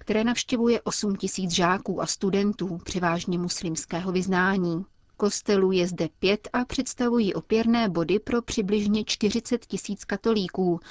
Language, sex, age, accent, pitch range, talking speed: Czech, female, 30-49, native, 175-210 Hz, 125 wpm